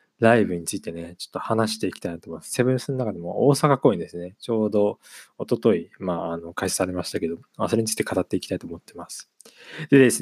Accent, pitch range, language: native, 90-140 Hz, Japanese